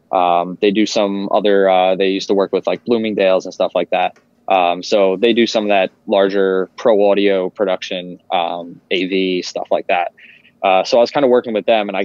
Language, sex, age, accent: English, male, 20-39, American